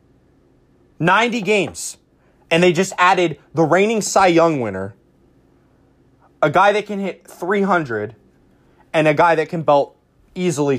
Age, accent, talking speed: 20-39, American, 135 wpm